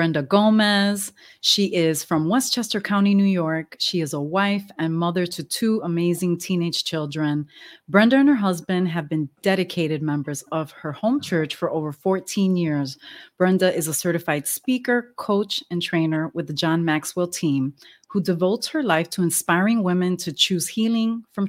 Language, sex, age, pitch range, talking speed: English, female, 30-49, 160-200 Hz, 170 wpm